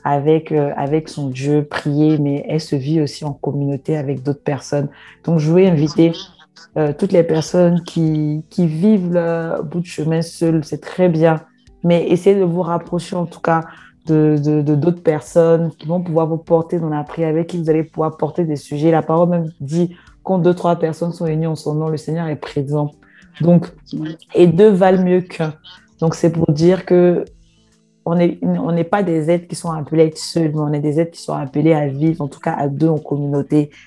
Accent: French